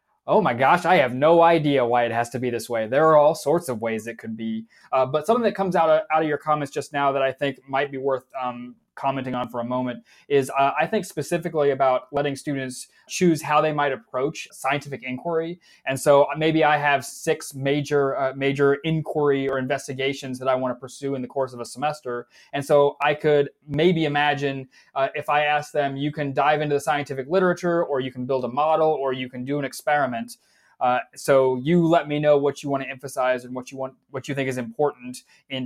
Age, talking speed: 20-39, 225 wpm